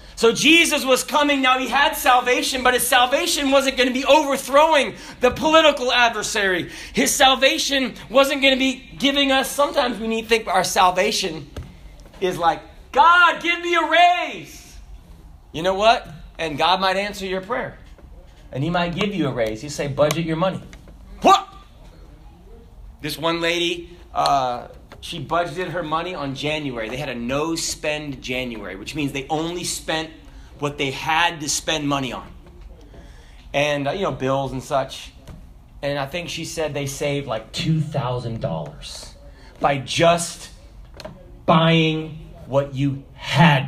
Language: English